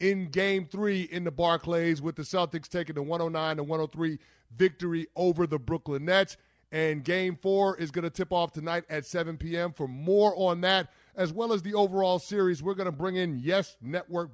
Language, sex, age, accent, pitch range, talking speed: English, male, 30-49, American, 160-190 Hz, 195 wpm